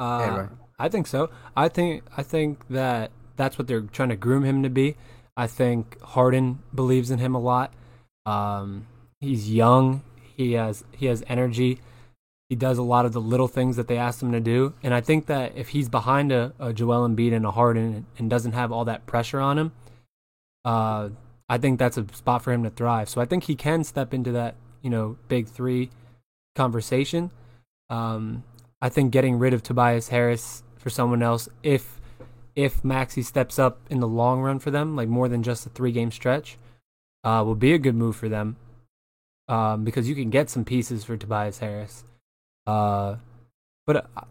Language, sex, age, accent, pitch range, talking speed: English, male, 20-39, American, 115-130 Hz, 195 wpm